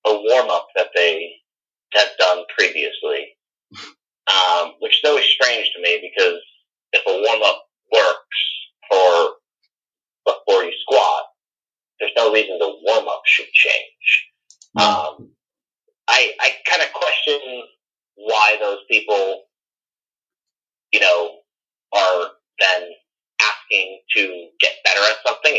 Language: English